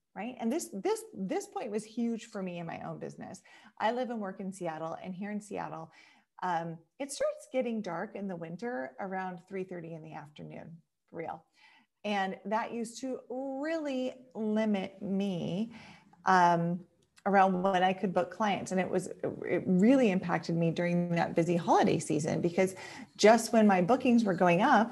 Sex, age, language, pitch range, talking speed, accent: female, 30-49, English, 175-225 Hz, 175 wpm, American